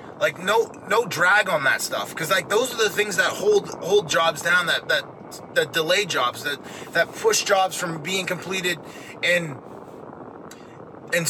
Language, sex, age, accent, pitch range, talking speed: English, male, 20-39, American, 160-200 Hz, 170 wpm